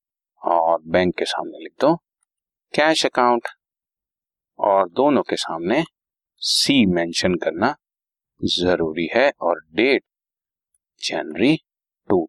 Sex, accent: male, native